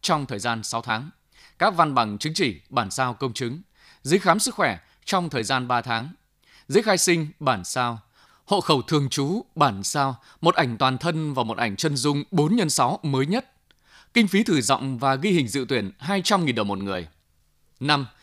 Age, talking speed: 20-39, 200 wpm